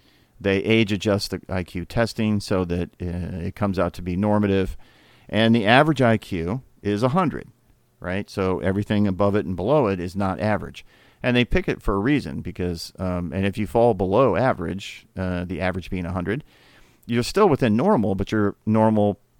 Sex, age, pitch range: male, 50-69, 95-115 Hz